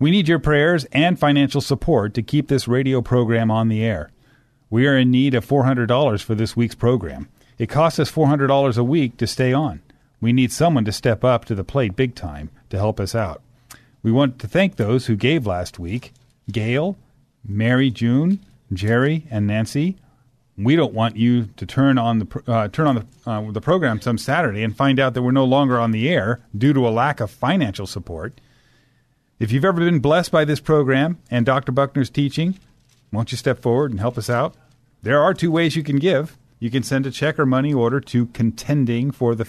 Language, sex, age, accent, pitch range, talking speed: English, male, 40-59, American, 115-140 Hz, 200 wpm